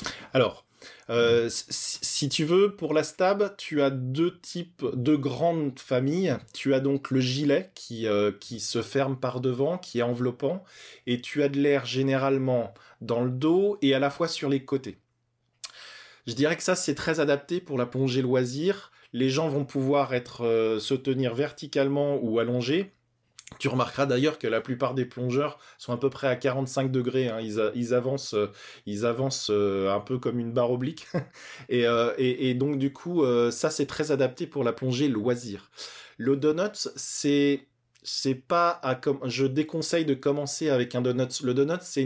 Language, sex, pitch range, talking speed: French, male, 120-145 Hz, 180 wpm